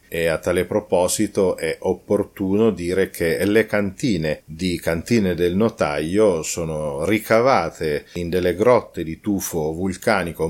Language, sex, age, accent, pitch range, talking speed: Italian, male, 40-59, native, 90-110 Hz, 125 wpm